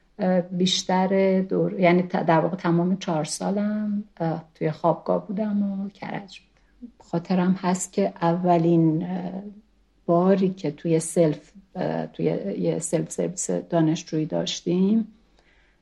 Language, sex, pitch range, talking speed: Persian, female, 175-215 Hz, 100 wpm